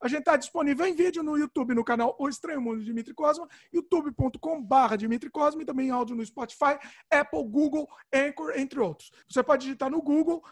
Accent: Brazilian